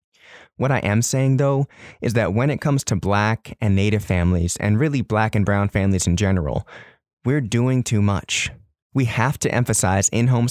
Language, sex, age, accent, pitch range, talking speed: English, male, 20-39, American, 95-125 Hz, 185 wpm